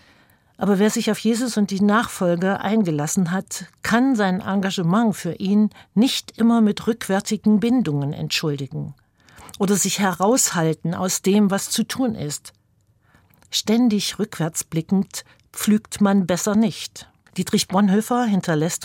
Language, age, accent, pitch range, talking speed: German, 50-69, German, 150-210 Hz, 125 wpm